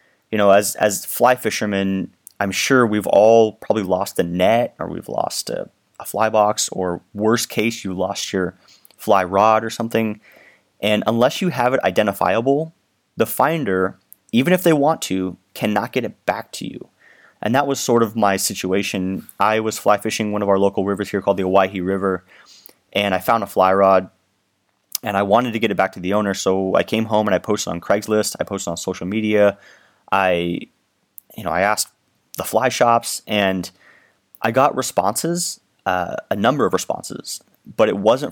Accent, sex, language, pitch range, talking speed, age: American, male, English, 95-115 Hz, 190 wpm, 30-49